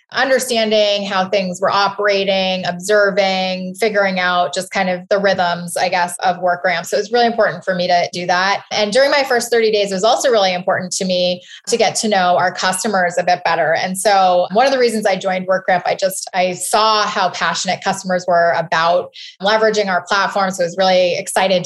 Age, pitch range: 20-39, 180-210 Hz